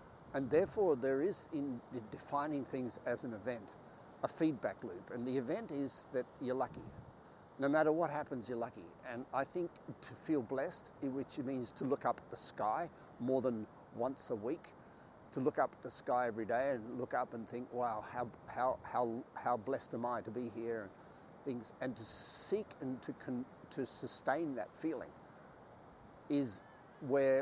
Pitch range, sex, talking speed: 120-140 Hz, male, 180 wpm